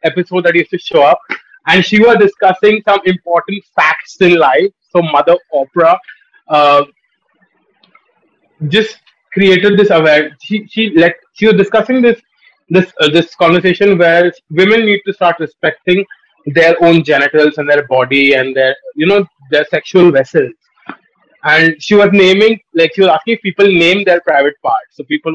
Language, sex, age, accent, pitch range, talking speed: Hindi, male, 30-49, native, 160-215 Hz, 160 wpm